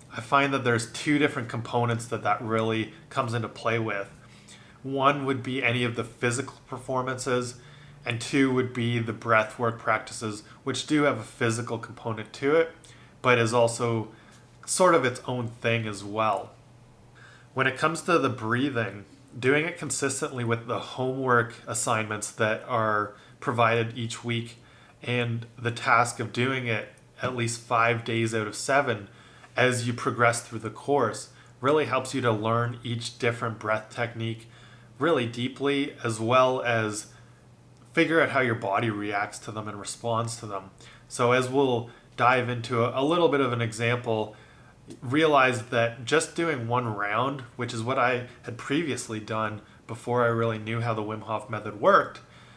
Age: 30-49